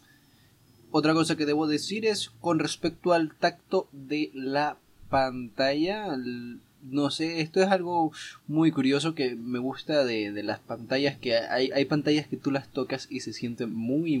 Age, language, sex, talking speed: 20-39, Spanish, male, 165 wpm